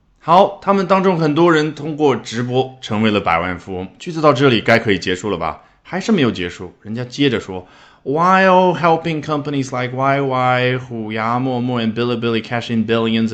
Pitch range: 95-140 Hz